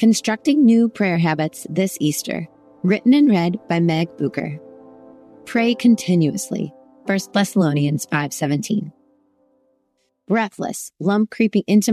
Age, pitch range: 30-49, 165-205 Hz